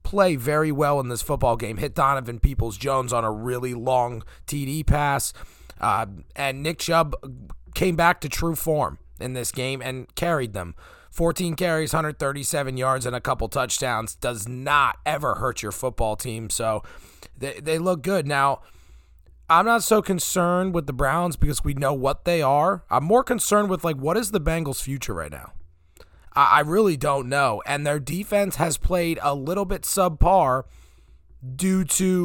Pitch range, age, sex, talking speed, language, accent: 125-160 Hz, 30-49, male, 175 wpm, English, American